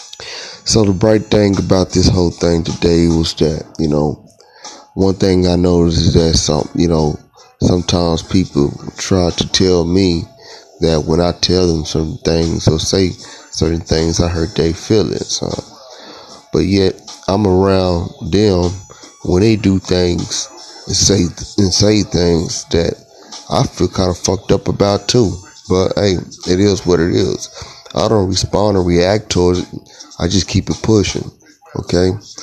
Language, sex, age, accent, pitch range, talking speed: English, male, 30-49, American, 85-100 Hz, 160 wpm